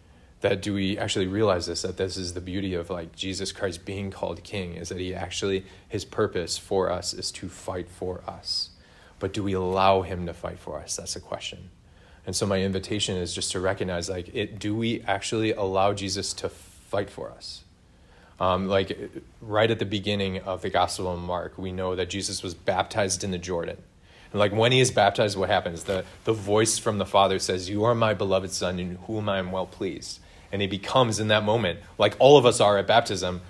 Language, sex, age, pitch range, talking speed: English, male, 30-49, 90-110 Hz, 215 wpm